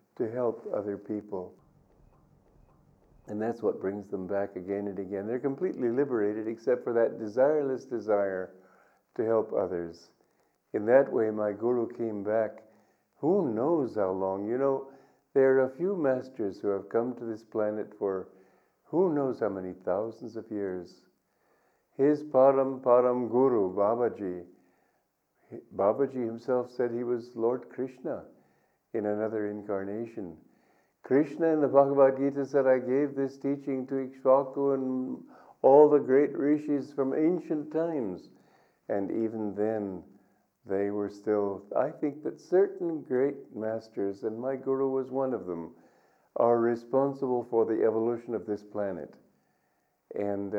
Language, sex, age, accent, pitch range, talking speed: English, male, 50-69, American, 100-135 Hz, 140 wpm